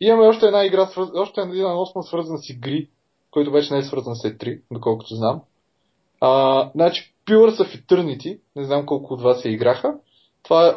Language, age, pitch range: Bulgarian, 20-39, 145-205 Hz